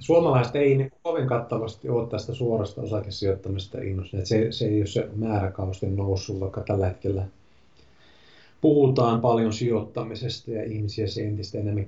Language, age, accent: Finnish, 30-49, native